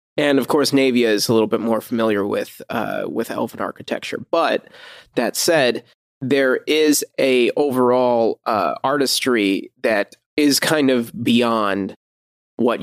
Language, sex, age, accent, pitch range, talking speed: English, male, 20-39, American, 110-125 Hz, 140 wpm